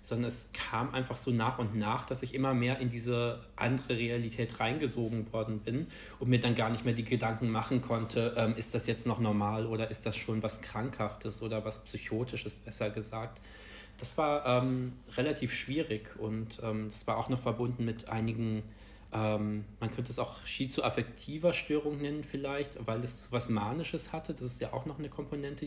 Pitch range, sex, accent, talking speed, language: 110-125 Hz, male, German, 190 wpm, German